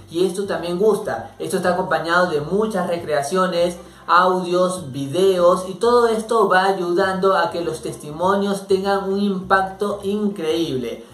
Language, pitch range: Spanish, 175-205 Hz